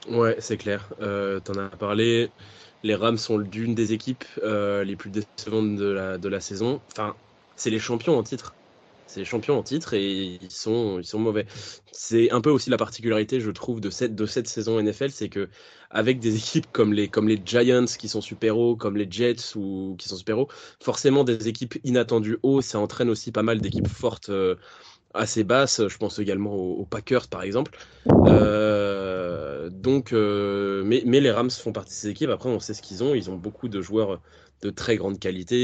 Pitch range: 100-115 Hz